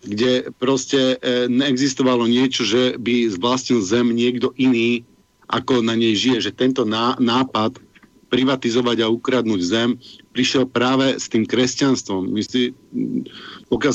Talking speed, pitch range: 130 wpm, 115-130 Hz